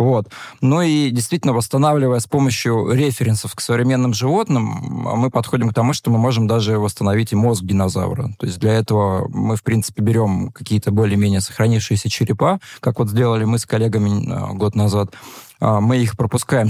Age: 20-39